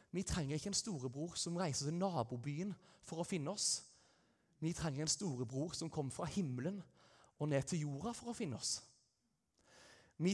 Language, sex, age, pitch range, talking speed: English, male, 30-49, 135-180 Hz, 175 wpm